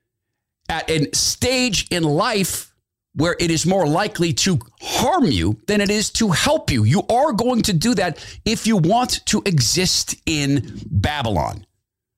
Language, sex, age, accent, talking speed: English, male, 50-69, American, 160 wpm